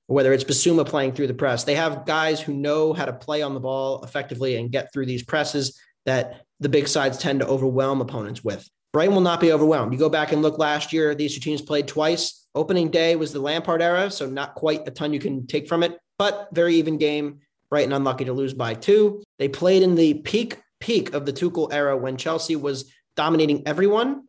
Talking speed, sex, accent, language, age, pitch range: 225 wpm, male, American, English, 30-49, 140-170 Hz